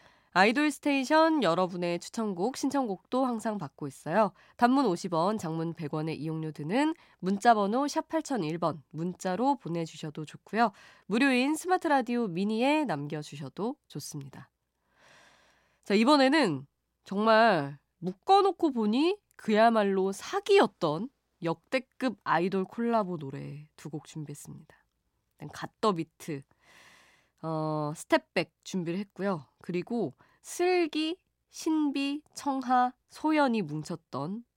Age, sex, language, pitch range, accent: 20-39, female, Korean, 155-245 Hz, native